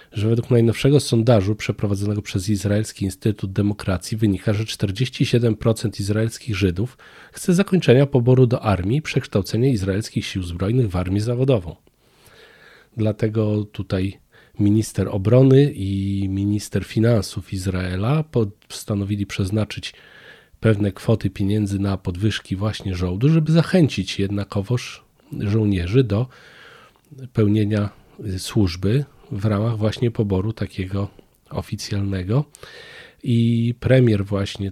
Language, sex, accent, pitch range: Polish, male, native, 100-120 Hz